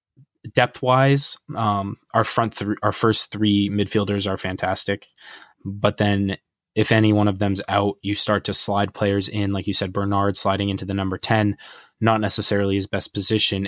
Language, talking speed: English, 170 wpm